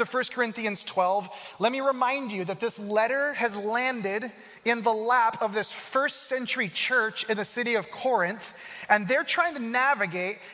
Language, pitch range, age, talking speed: English, 205-250 Hz, 30-49, 170 wpm